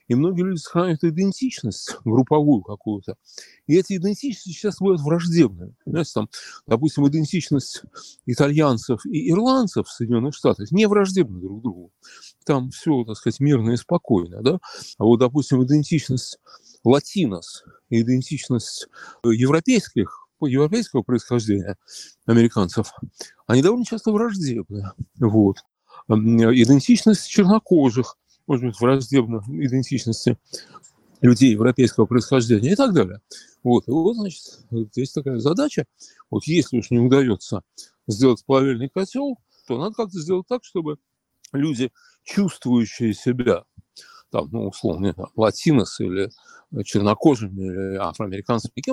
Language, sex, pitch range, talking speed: Russian, male, 115-165 Hz, 115 wpm